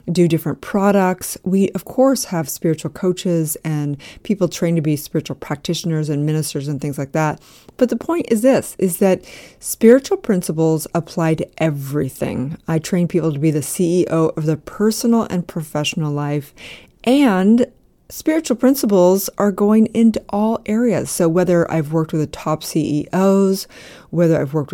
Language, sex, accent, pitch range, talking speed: English, female, American, 160-205 Hz, 160 wpm